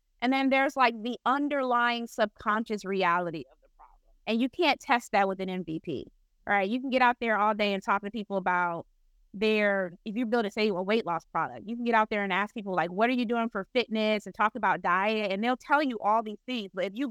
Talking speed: 250 wpm